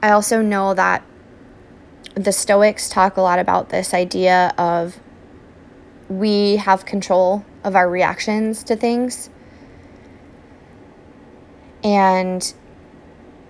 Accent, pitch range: American, 170-195 Hz